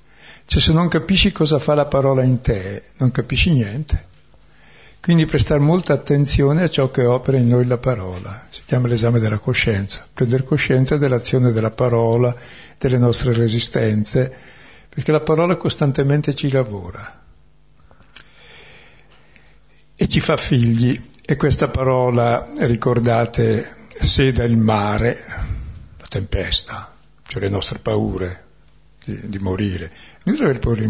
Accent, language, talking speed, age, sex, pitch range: native, Italian, 130 wpm, 60-79, male, 105-135 Hz